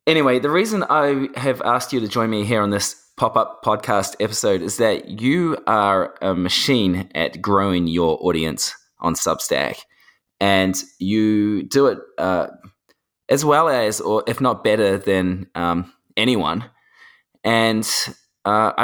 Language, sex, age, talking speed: English, male, 20-39, 145 wpm